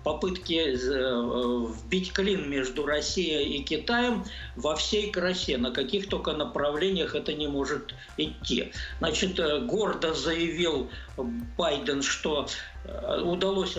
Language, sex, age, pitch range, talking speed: Russian, male, 50-69, 130-185 Hz, 105 wpm